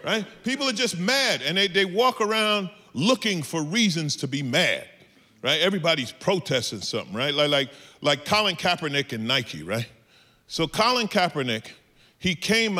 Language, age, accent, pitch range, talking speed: English, 40-59, American, 145-225 Hz, 160 wpm